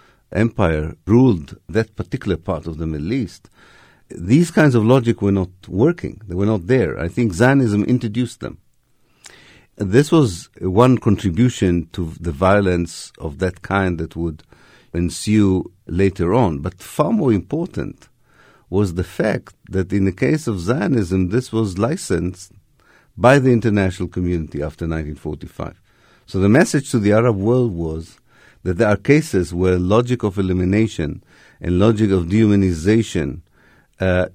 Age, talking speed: 50-69, 145 wpm